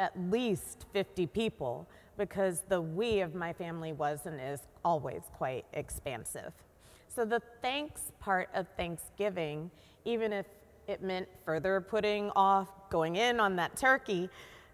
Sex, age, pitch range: female, 30-49, 155-200 Hz